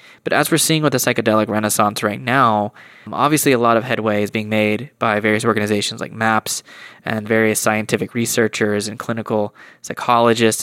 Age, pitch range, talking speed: 20-39, 110-125 Hz, 170 wpm